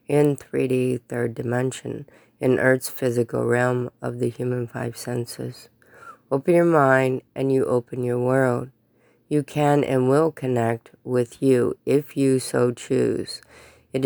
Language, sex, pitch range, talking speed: English, female, 125-140 Hz, 140 wpm